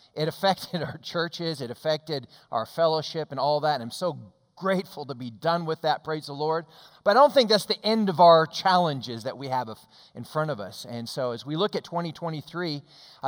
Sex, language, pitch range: male, English, 160-215 Hz